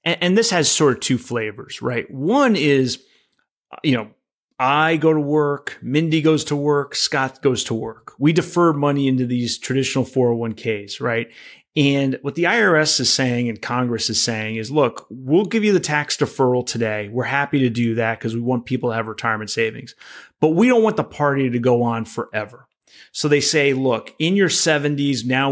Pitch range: 120-145 Hz